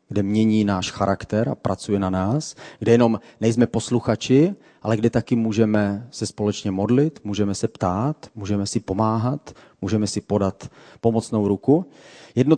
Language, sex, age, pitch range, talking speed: Czech, male, 30-49, 105-130 Hz, 150 wpm